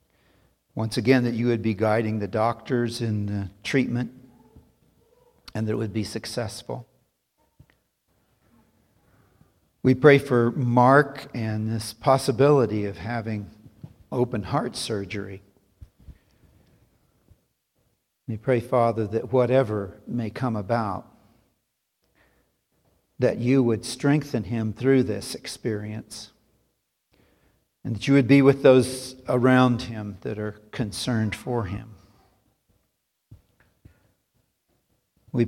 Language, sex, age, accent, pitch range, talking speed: English, male, 60-79, American, 105-130 Hz, 105 wpm